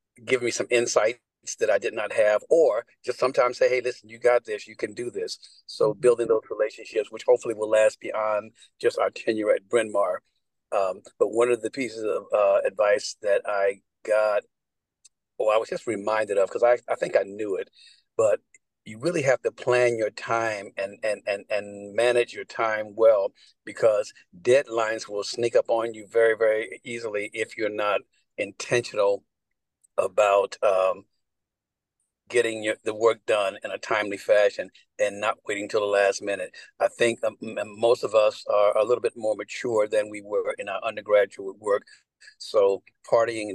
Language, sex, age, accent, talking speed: English, male, 50-69, American, 180 wpm